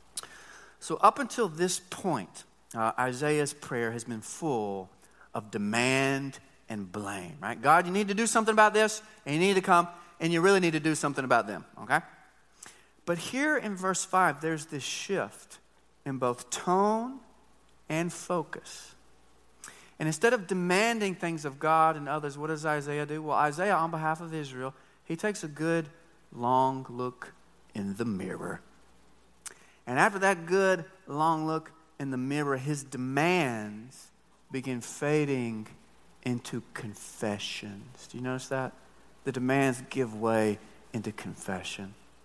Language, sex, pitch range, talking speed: English, male, 125-185 Hz, 150 wpm